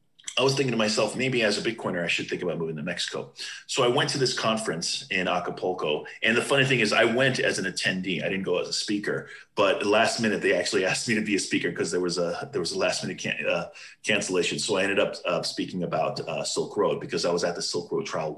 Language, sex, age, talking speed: English, male, 30-49, 260 wpm